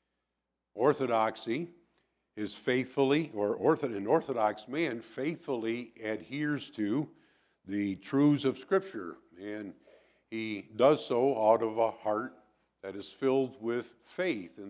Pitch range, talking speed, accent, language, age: 110-150 Hz, 115 wpm, American, English, 60-79